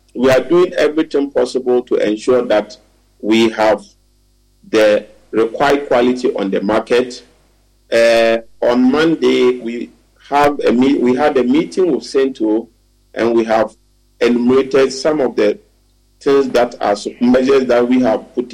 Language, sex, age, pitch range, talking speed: English, male, 50-69, 110-145 Hz, 140 wpm